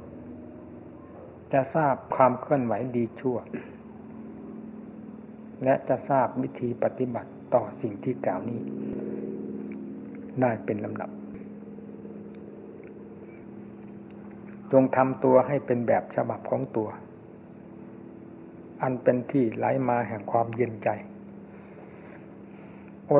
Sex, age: male, 60-79